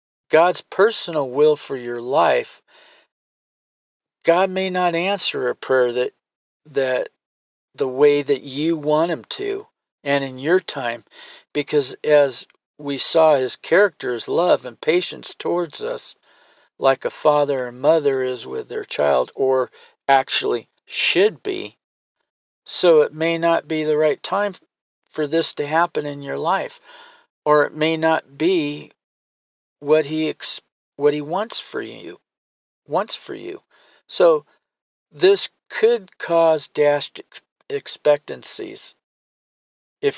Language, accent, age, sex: English, American, 50-69, male